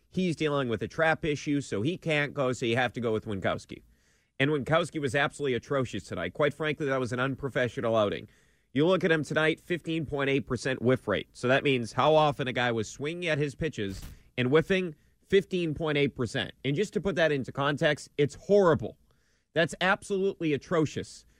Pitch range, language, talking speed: 120-160 Hz, English, 180 wpm